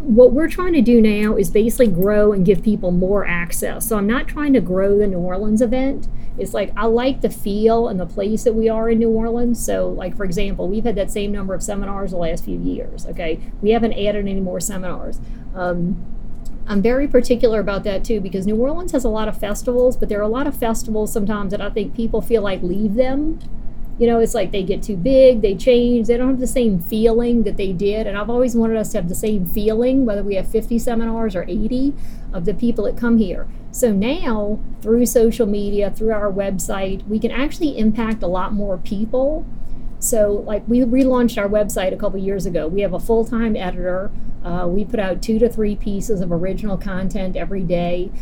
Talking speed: 220 wpm